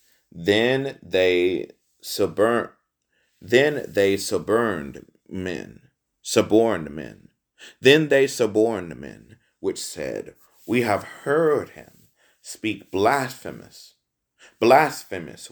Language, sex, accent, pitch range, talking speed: English, male, American, 100-140 Hz, 80 wpm